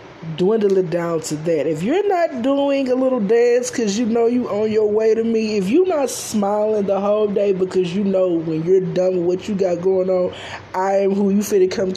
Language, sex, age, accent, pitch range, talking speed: English, male, 20-39, American, 160-215 Hz, 230 wpm